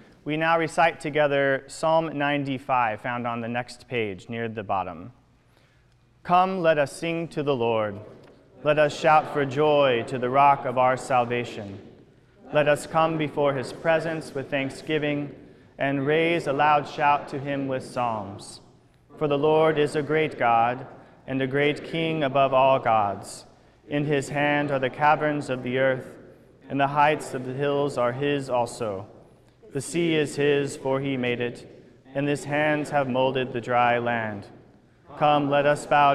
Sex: male